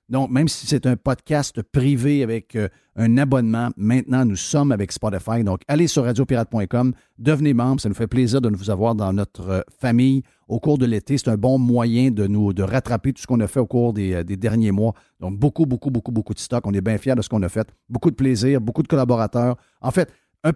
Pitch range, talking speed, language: 110-140 Hz, 230 wpm, French